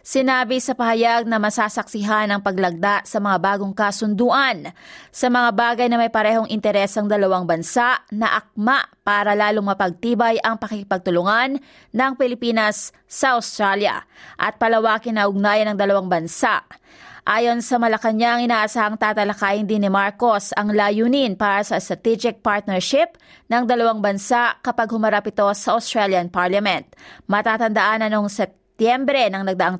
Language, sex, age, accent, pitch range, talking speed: Filipino, female, 20-39, native, 205-245 Hz, 140 wpm